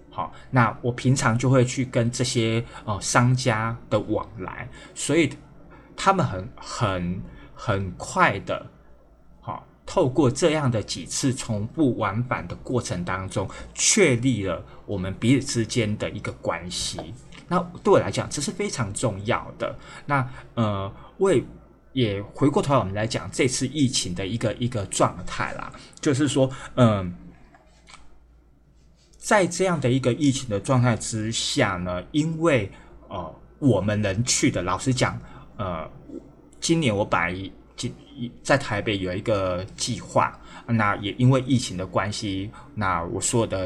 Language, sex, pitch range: Chinese, male, 100-130 Hz